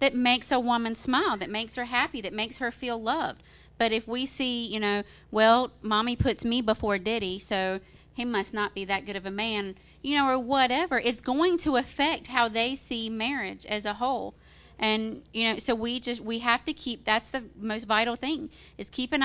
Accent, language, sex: American, English, female